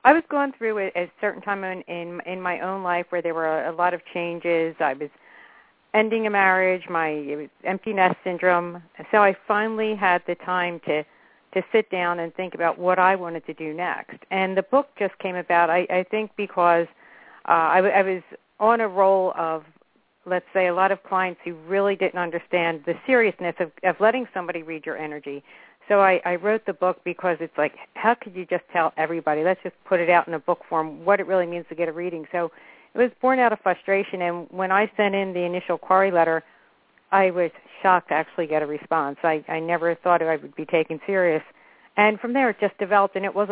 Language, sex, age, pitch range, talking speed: English, female, 50-69, 165-195 Hz, 230 wpm